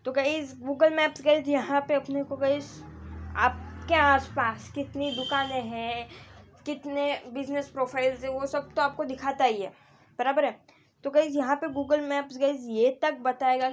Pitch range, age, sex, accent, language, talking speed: 245-290 Hz, 20-39, female, native, Hindi, 165 wpm